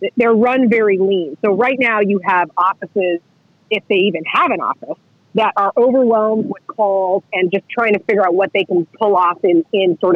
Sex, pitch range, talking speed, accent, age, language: female, 190-245 Hz, 205 wpm, American, 40-59, English